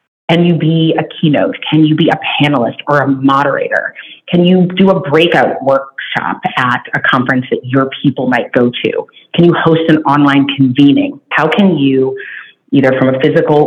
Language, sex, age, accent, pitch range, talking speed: English, female, 30-49, American, 135-175 Hz, 180 wpm